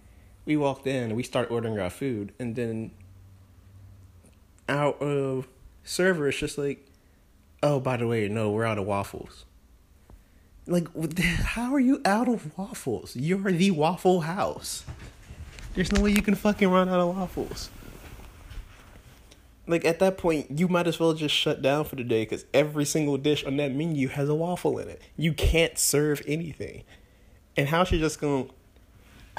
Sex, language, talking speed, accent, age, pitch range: male, English, 170 wpm, American, 30-49, 95-150 Hz